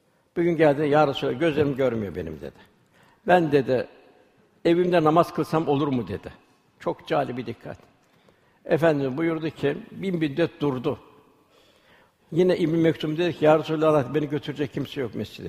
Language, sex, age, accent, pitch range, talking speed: Turkish, male, 60-79, native, 140-165 Hz, 150 wpm